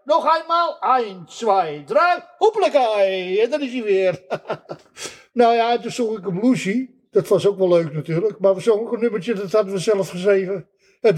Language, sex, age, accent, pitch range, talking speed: Dutch, male, 50-69, Dutch, 200-315 Hz, 195 wpm